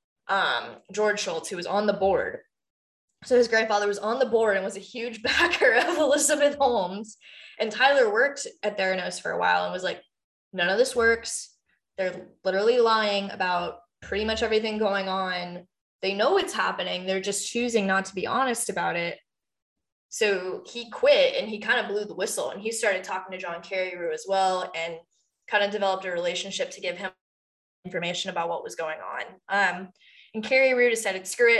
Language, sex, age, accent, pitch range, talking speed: English, female, 10-29, American, 185-230 Hz, 190 wpm